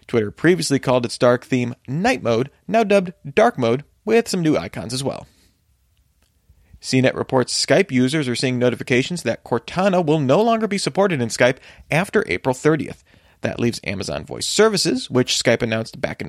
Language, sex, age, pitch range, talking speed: English, male, 30-49, 115-170 Hz, 175 wpm